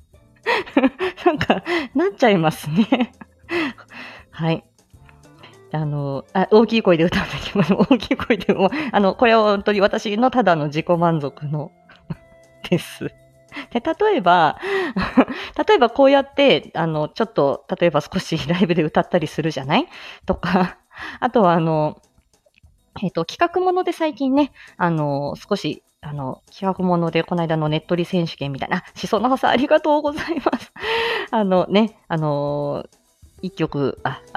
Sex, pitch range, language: female, 155-255 Hz, Japanese